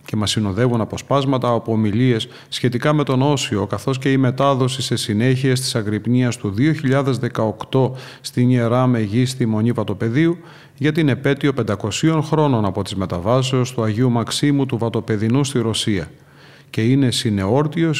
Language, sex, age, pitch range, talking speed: Greek, male, 40-59, 115-135 Hz, 140 wpm